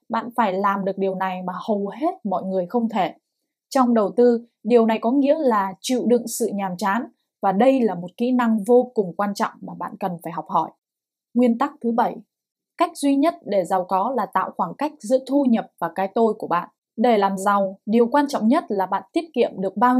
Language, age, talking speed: Vietnamese, 10-29, 230 wpm